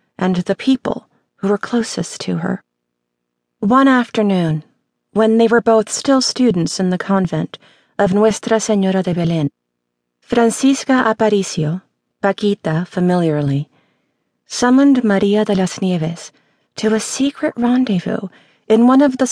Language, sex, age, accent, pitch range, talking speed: English, female, 40-59, American, 160-215 Hz, 125 wpm